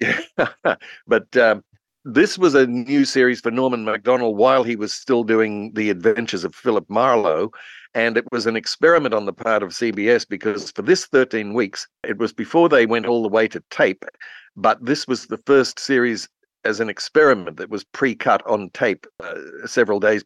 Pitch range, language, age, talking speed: 105-125 Hz, English, 60-79, 185 wpm